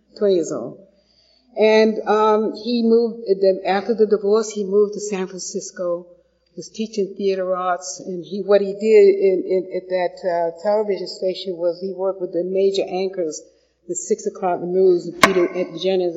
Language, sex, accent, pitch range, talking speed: English, female, American, 180-210 Hz, 180 wpm